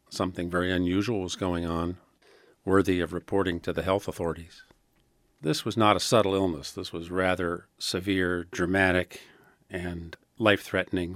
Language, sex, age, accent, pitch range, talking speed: English, male, 50-69, American, 85-95 Hz, 140 wpm